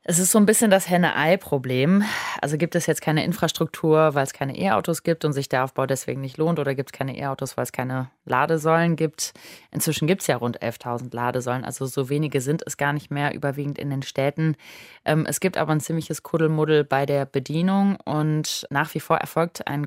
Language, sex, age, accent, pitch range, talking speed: German, female, 20-39, German, 135-160 Hz, 210 wpm